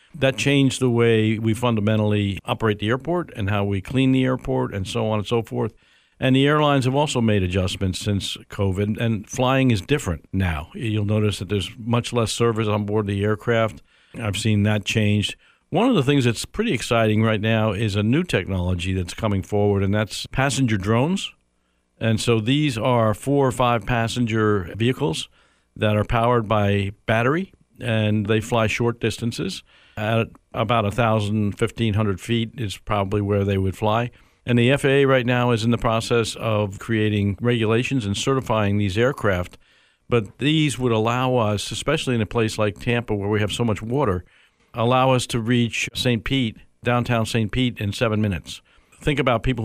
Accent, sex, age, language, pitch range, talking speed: American, male, 50-69, English, 105-125 Hz, 180 wpm